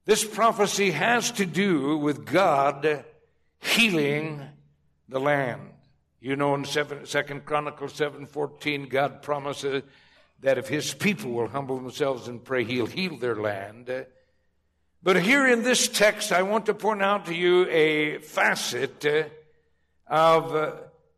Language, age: English, 60-79